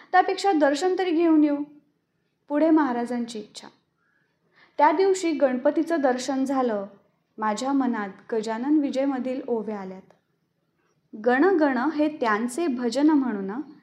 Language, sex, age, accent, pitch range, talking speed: Marathi, female, 20-39, native, 240-325 Hz, 115 wpm